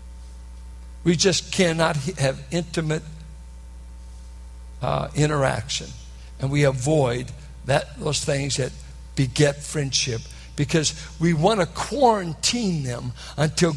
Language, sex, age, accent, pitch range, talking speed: English, male, 60-79, American, 120-170 Hz, 100 wpm